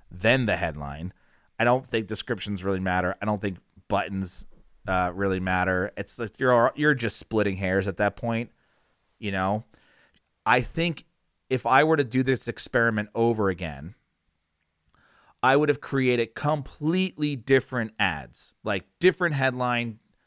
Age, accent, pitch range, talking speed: 30-49, American, 100-140 Hz, 145 wpm